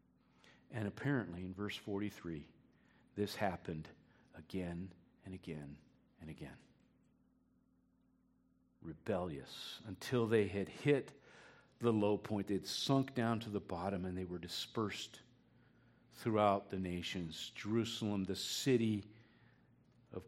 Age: 50-69